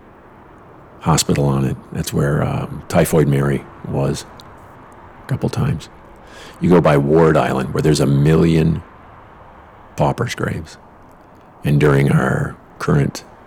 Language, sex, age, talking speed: English, male, 50-69, 120 wpm